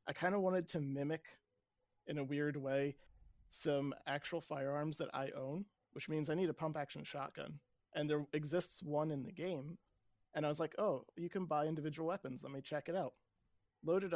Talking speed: 195 wpm